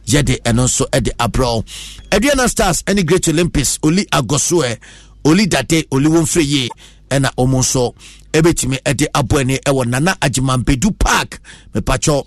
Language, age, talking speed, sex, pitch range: English, 50-69, 145 wpm, male, 130-180 Hz